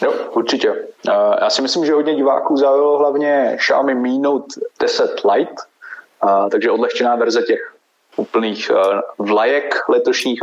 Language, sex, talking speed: Czech, male, 125 wpm